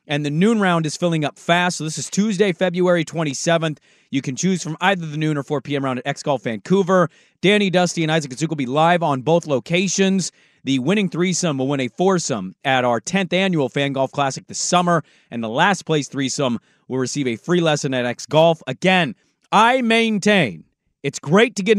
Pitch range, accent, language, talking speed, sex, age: 145-180 Hz, American, English, 205 wpm, male, 30-49